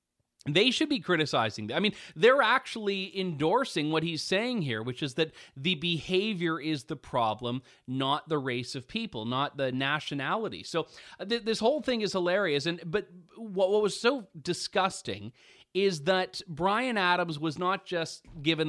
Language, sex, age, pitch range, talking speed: English, male, 30-49, 130-180 Hz, 165 wpm